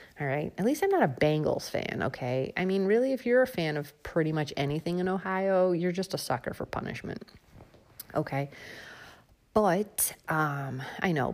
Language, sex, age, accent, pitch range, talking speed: English, female, 30-49, American, 140-185 Hz, 175 wpm